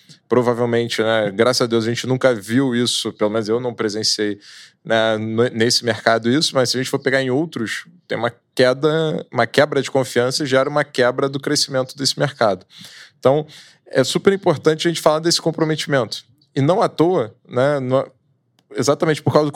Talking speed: 185 wpm